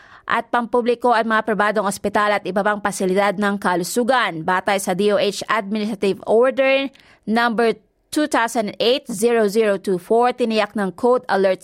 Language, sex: Filipino, female